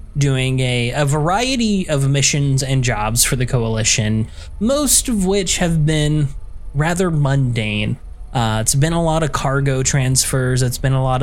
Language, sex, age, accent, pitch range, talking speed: English, male, 20-39, American, 115-140 Hz, 160 wpm